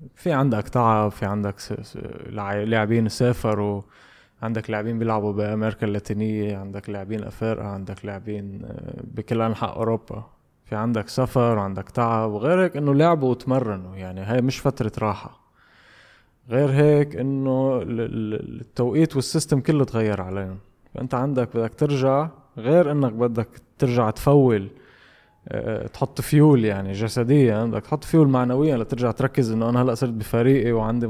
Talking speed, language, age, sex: 130 wpm, Arabic, 20-39, male